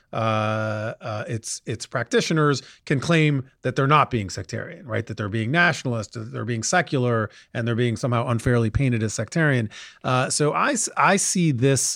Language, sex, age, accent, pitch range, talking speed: English, male, 30-49, American, 115-140 Hz, 170 wpm